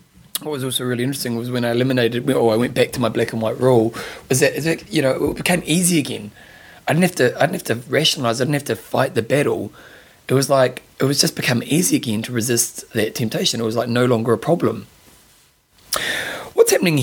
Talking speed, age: 220 wpm, 20-39